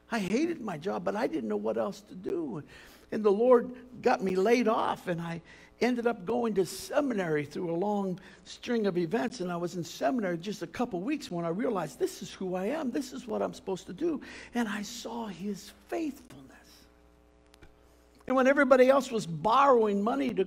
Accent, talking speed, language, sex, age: American, 200 wpm, English, male, 60-79